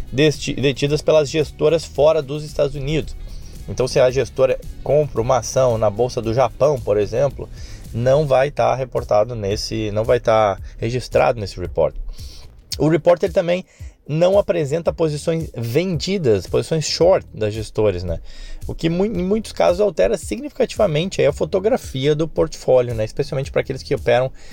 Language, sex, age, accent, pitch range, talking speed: Portuguese, male, 20-39, Brazilian, 110-155 Hz, 160 wpm